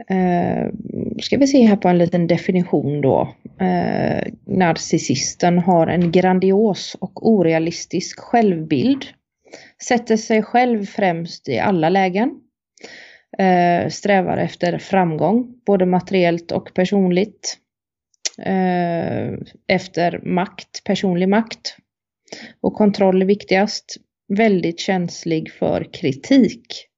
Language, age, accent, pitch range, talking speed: Swedish, 30-49, native, 175-205 Hz, 100 wpm